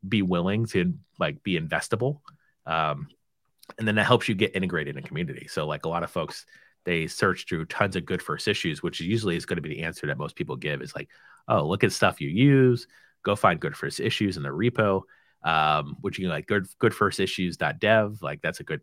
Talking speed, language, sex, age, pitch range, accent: 225 wpm, English, male, 30-49, 85-115 Hz, American